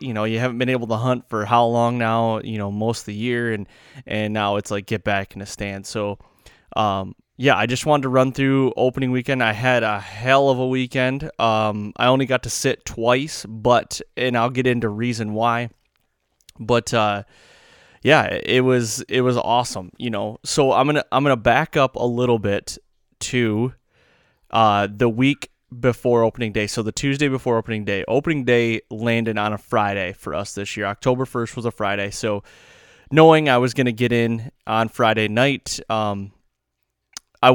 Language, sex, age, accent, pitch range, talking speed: English, male, 20-39, American, 110-130 Hz, 195 wpm